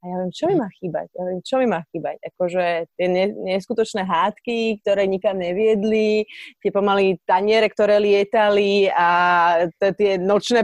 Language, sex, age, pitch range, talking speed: Slovak, female, 30-49, 195-245 Hz, 160 wpm